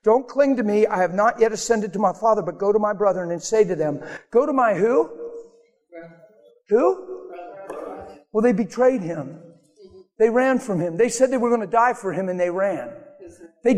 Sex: male